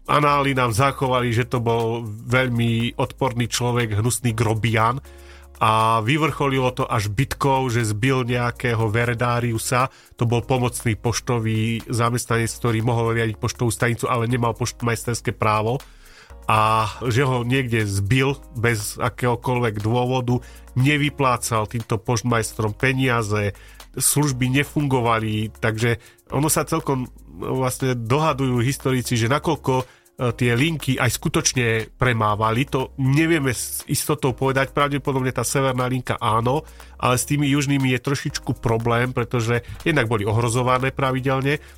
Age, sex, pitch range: 30-49, male, 115-135 Hz